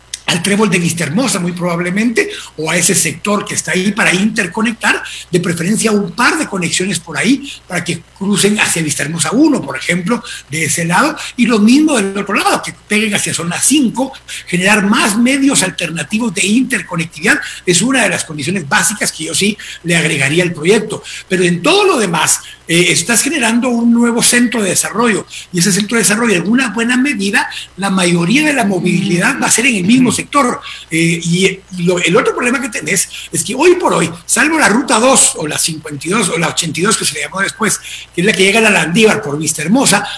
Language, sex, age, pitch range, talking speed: Spanish, male, 60-79, 175-235 Hz, 210 wpm